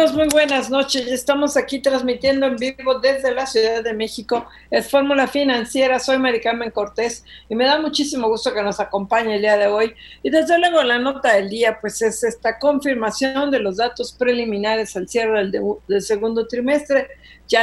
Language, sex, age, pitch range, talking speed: Spanish, female, 50-69, 200-250 Hz, 180 wpm